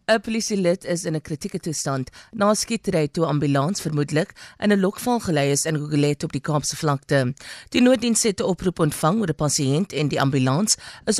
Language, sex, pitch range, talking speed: English, female, 150-205 Hz, 195 wpm